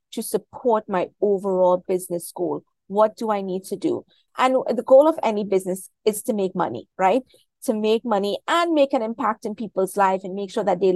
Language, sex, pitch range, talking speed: English, female, 190-240 Hz, 210 wpm